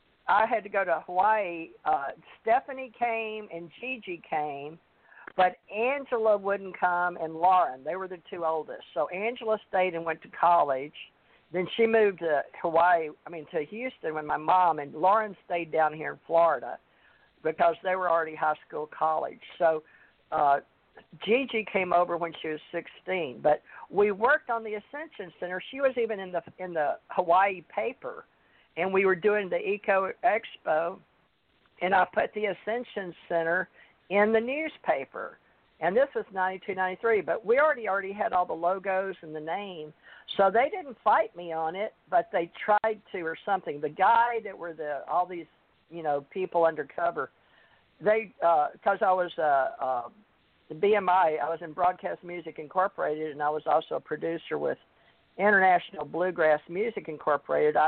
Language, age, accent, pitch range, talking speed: English, 50-69, American, 165-210 Hz, 170 wpm